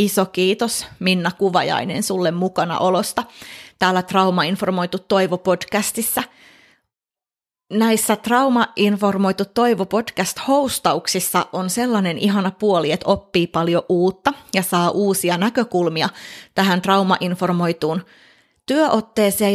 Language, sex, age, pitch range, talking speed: Finnish, female, 30-49, 180-220 Hz, 95 wpm